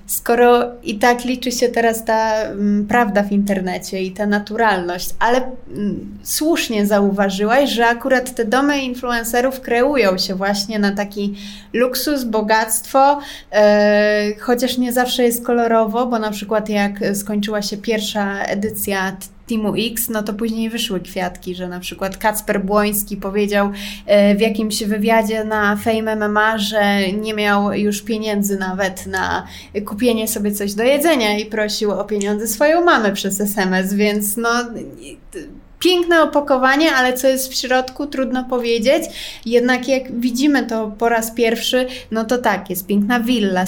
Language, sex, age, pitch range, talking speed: Polish, female, 20-39, 205-250 Hz, 145 wpm